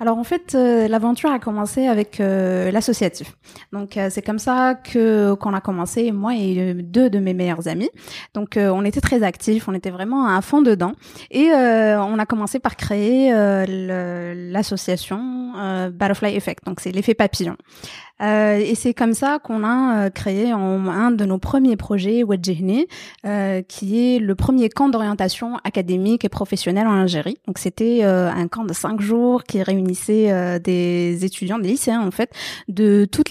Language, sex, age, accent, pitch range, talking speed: French, female, 20-39, French, 195-235 Hz, 180 wpm